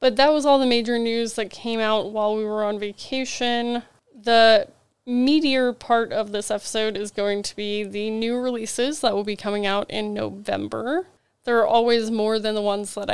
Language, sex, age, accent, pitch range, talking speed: English, female, 20-39, American, 210-250 Hz, 195 wpm